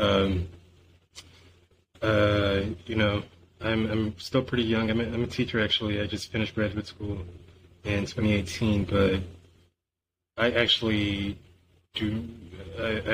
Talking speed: 125 wpm